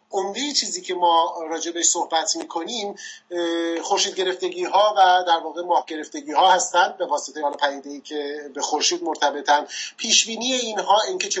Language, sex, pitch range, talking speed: Persian, male, 165-245 Hz, 145 wpm